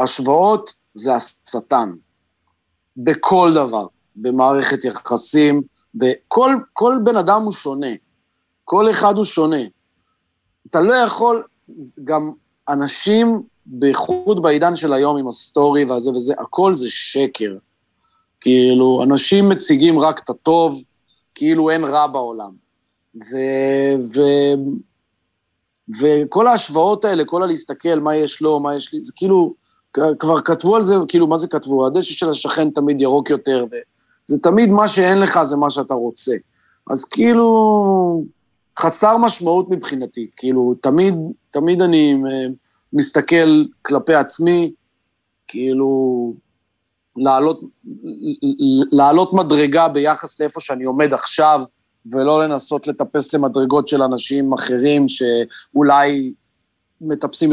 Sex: male